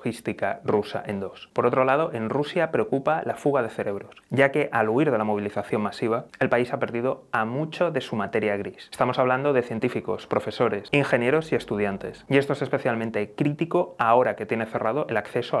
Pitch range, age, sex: 110-140 Hz, 30-49, male